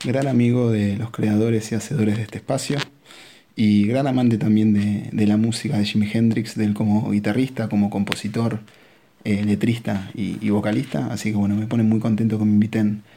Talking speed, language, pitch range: 180 wpm, Spanish, 105-120 Hz